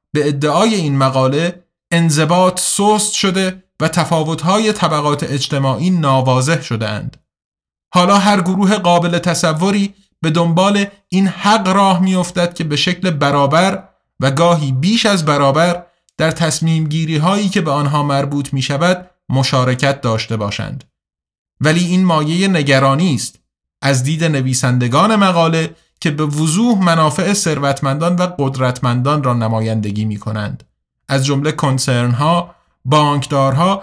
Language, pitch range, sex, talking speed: Persian, 135-180 Hz, male, 125 wpm